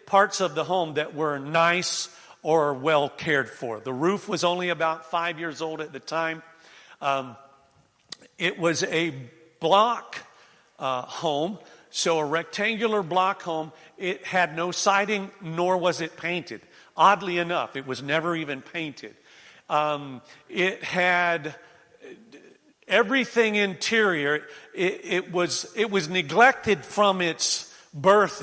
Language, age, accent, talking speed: English, 50-69, American, 130 wpm